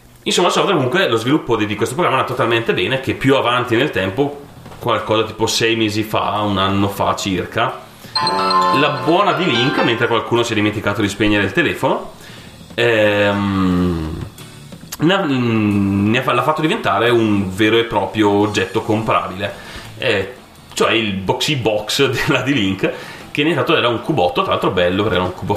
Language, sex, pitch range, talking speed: Italian, male, 100-115 Hz, 165 wpm